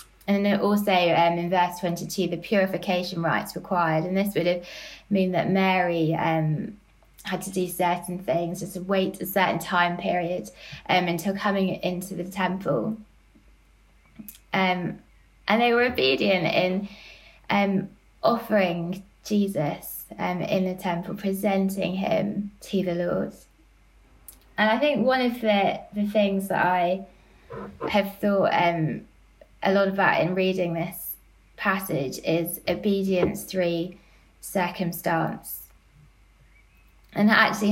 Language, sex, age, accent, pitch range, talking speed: English, female, 20-39, British, 175-200 Hz, 130 wpm